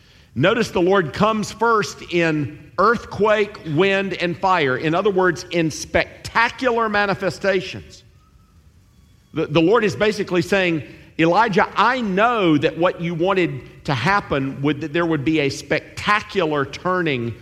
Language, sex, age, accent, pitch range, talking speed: English, male, 50-69, American, 115-165 Hz, 135 wpm